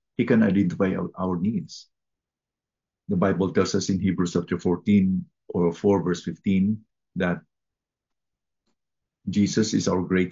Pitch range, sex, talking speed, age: 85-100 Hz, male, 135 wpm, 50-69